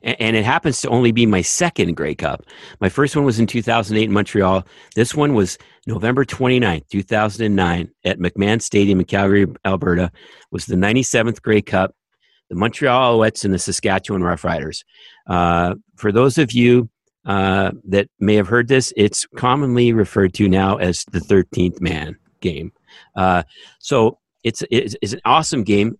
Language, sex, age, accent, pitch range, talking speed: English, male, 50-69, American, 95-115 Hz, 165 wpm